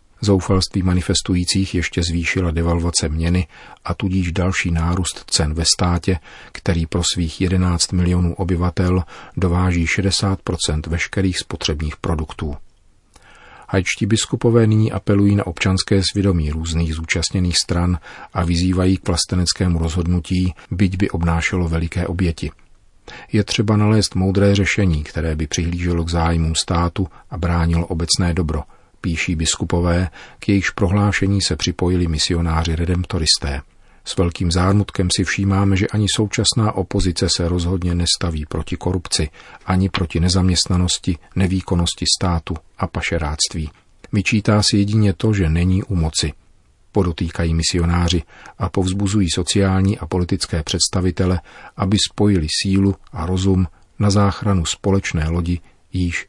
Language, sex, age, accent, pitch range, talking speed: Czech, male, 40-59, native, 85-95 Hz, 125 wpm